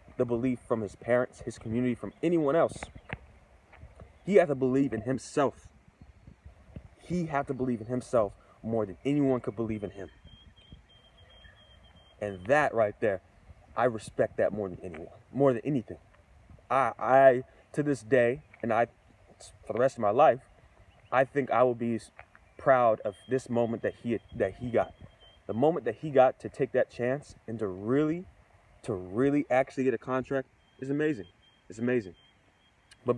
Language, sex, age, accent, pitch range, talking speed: English, male, 30-49, American, 100-135 Hz, 165 wpm